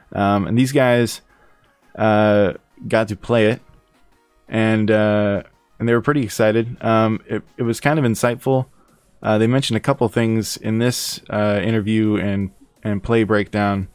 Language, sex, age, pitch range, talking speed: English, male, 20-39, 105-115 Hz, 160 wpm